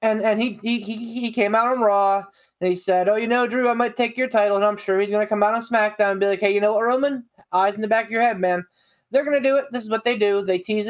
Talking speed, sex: 320 wpm, male